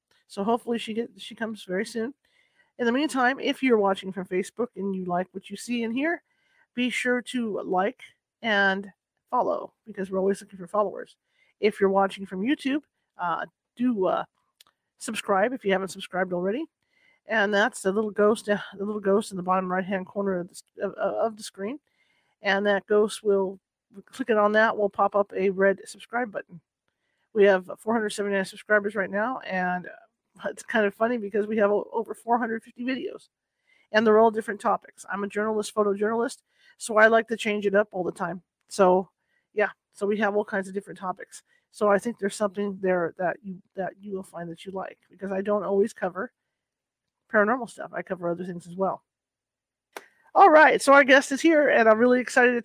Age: 40-59